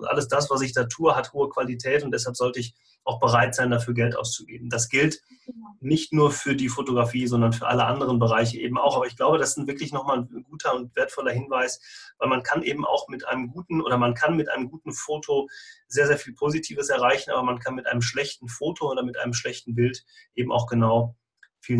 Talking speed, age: 225 wpm, 30-49